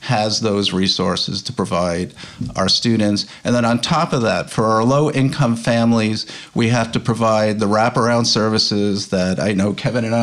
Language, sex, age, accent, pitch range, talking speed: English, male, 50-69, American, 110-130 Hz, 175 wpm